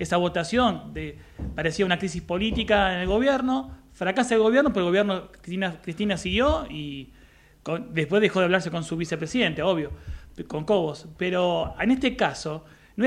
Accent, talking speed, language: Argentinian, 155 wpm, Spanish